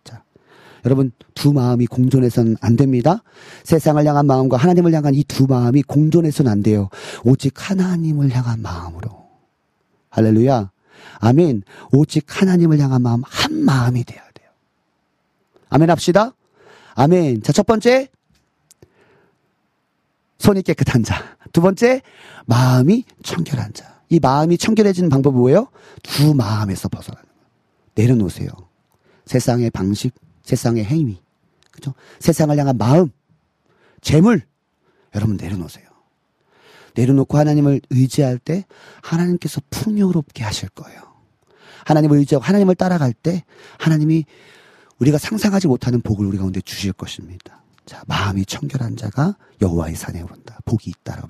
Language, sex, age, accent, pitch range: Korean, male, 40-59, native, 115-160 Hz